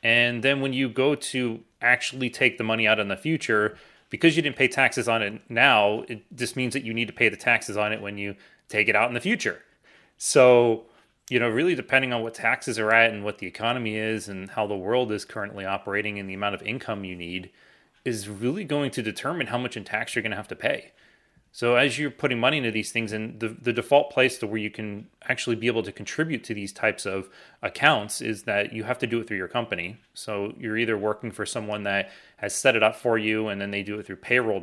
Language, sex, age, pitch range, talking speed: English, male, 30-49, 105-125 Hz, 250 wpm